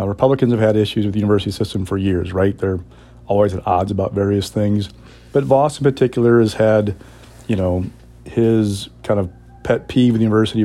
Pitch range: 100-120 Hz